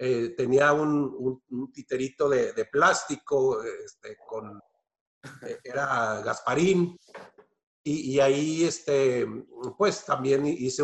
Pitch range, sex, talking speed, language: 135-185 Hz, male, 115 wpm, Spanish